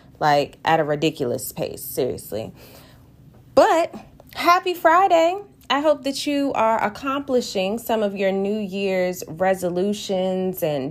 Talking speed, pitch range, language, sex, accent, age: 120 wpm, 160-220 Hz, English, female, American, 20-39